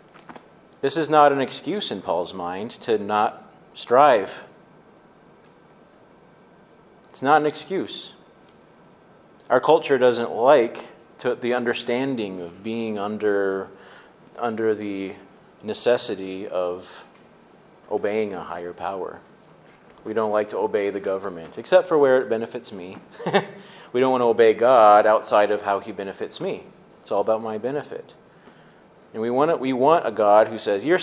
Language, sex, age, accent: English, male, 30-49, American